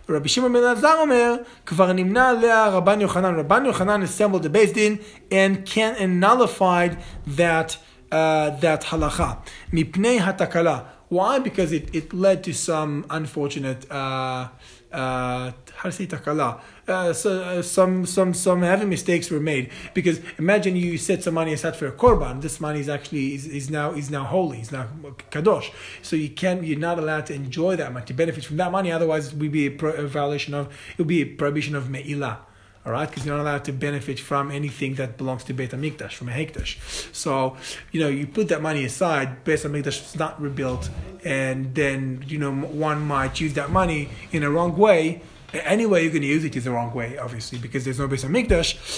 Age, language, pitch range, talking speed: 30-49, English, 145-185 Hz, 190 wpm